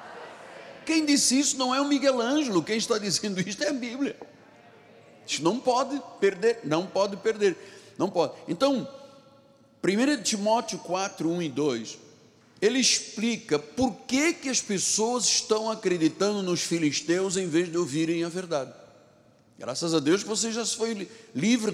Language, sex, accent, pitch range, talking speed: Portuguese, male, Brazilian, 160-235 Hz, 155 wpm